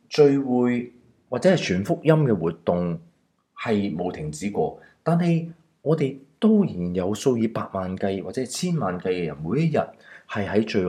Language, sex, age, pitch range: Chinese, male, 30-49, 75-115 Hz